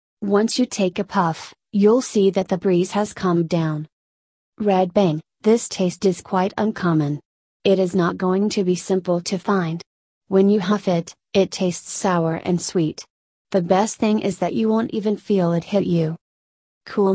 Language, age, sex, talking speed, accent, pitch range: English, 30-49, female, 180 wpm, American, 175-205 Hz